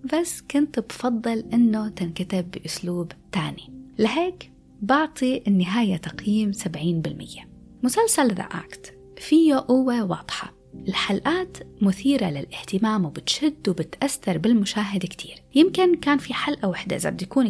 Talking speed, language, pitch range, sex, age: 115 wpm, Arabic, 175-250 Hz, female, 20-39